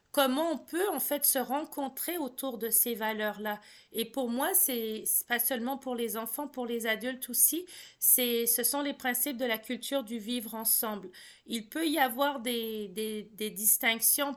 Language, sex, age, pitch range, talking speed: French, female, 40-59, 210-255 Hz, 185 wpm